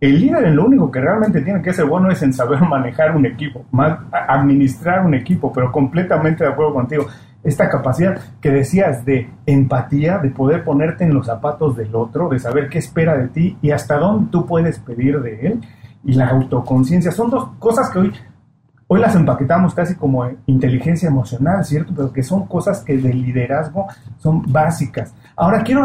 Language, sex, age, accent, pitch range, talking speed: Spanish, male, 40-59, Mexican, 135-170 Hz, 185 wpm